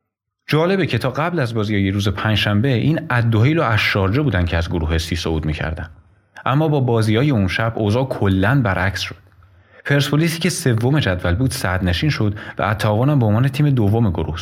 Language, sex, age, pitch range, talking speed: Persian, male, 30-49, 100-130 Hz, 185 wpm